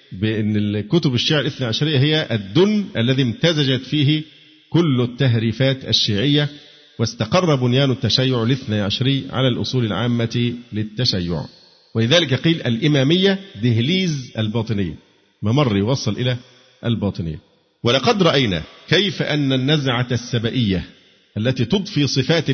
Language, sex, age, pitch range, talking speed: Arabic, male, 50-69, 115-145 Hz, 105 wpm